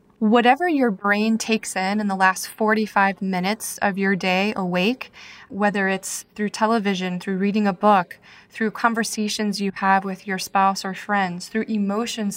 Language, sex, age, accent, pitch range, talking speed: English, female, 20-39, American, 190-215 Hz, 160 wpm